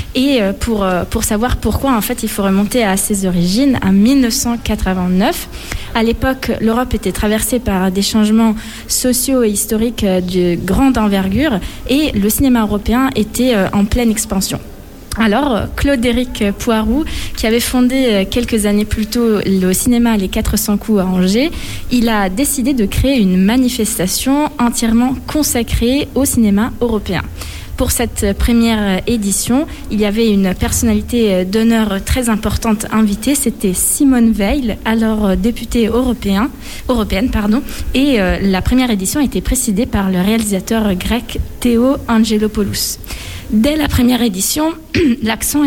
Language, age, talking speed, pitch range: French, 20-39, 140 wpm, 205-250 Hz